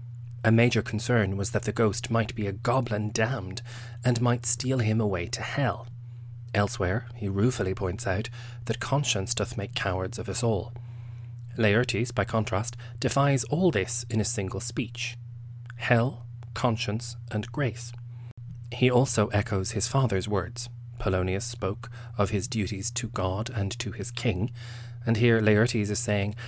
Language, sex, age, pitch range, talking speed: English, male, 30-49, 105-120 Hz, 155 wpm